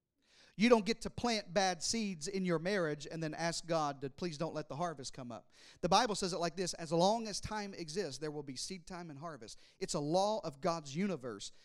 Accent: American